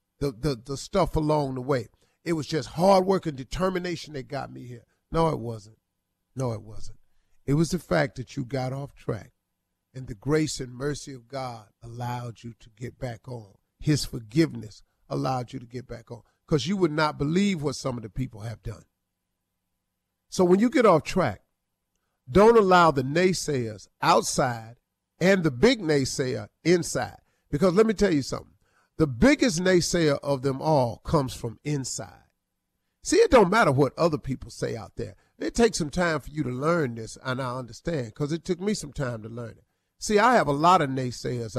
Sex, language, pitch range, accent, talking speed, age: male, English, 115-160 Hz, American, 195 wpm, 40-59